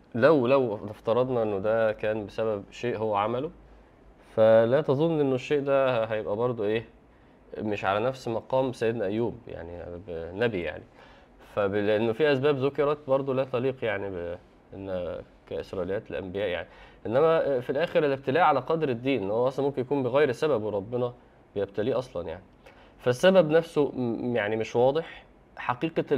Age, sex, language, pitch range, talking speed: 20-39, male, Arabic, 110-135 Hz, 140 wpm